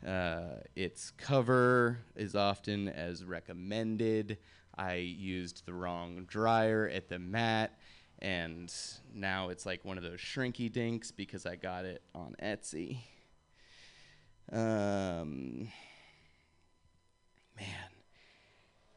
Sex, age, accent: male, 30-49, American